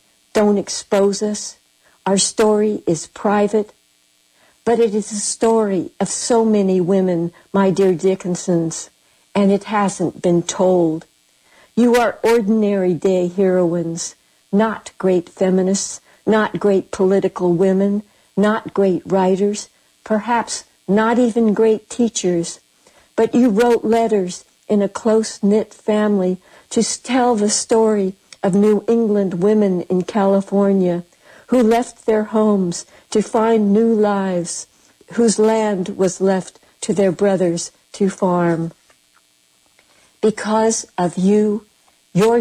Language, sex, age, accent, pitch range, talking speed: English, female, 60-79, American, 180-220 Hz, 115 wpm